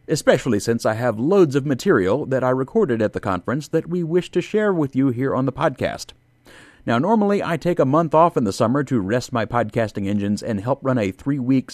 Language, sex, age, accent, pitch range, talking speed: English, male, 40-59, American, 115-165 Hz, 225 wpm